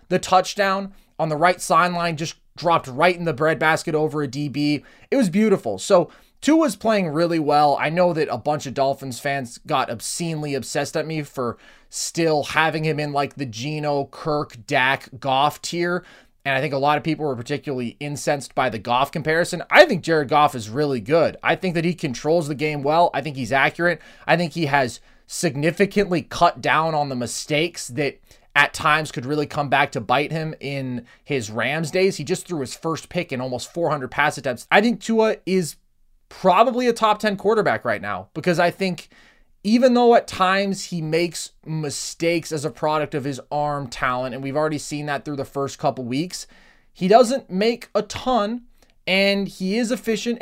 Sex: male